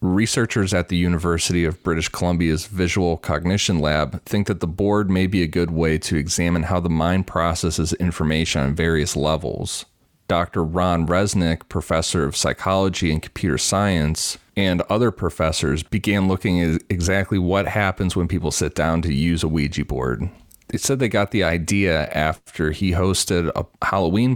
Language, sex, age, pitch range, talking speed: English, male, 30-49, 80-95 Hz, 165 wpm